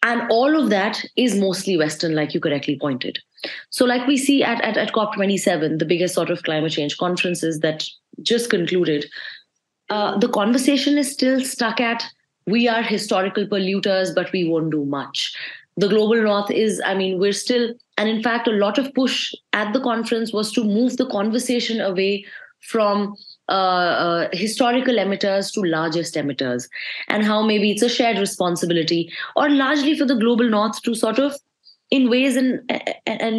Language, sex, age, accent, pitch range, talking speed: English, female, 20-39, Indian, 185-240 Hz, 175 wpm